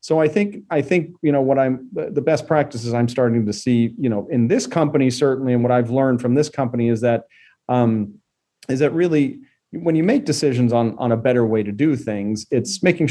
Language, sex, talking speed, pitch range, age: English, male, 225 wpm, 115-140 Hz, 40-59